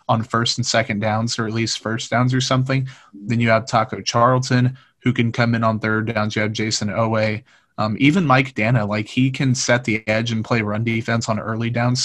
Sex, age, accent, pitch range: male, 30-49, American, 110-125 Hz